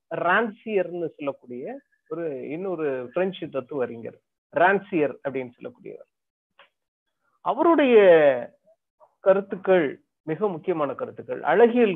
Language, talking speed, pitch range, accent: Tamil, 55 wpm, 160-235 Hz, native